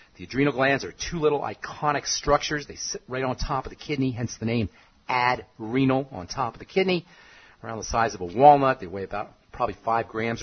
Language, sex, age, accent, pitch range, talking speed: English, male, 40-59, American, 105-150 Hz, 215 wpm